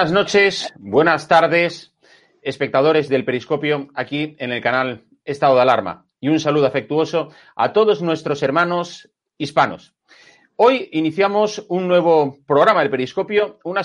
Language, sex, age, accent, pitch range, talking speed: Spanish, male, 30-49, Spanish, 140-195 Hz, 135 wpm